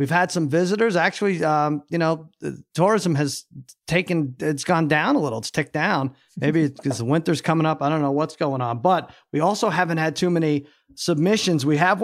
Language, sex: English, male